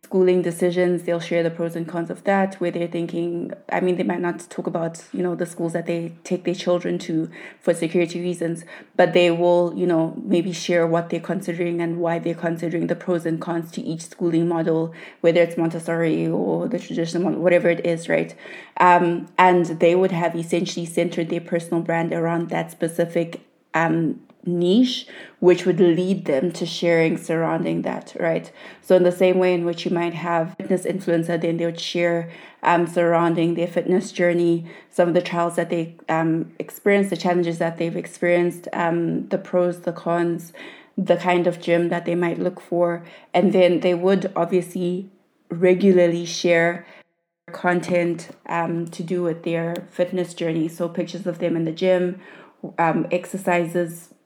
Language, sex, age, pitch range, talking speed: English, female, 20-39, 170-180 Hz, 180 wpm